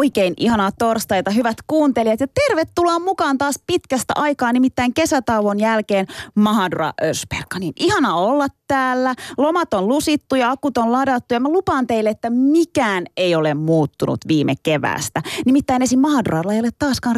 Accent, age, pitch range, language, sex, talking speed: native, 30-49, 175-265 Hz, Finnish, female, 155 wpm